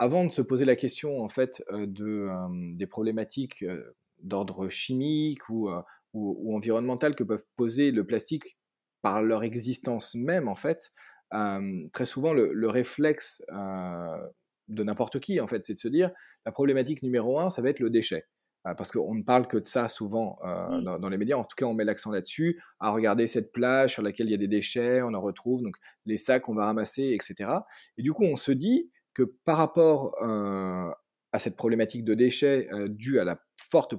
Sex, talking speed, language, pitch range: male, 210 wpm, French, 110-145 Hz